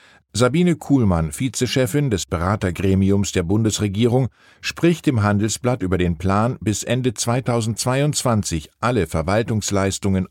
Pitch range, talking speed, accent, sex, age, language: 95-135 Hz, 105 wpm, German, male, 50-69, German